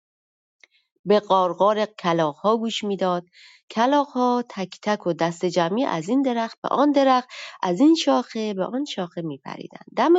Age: 30-49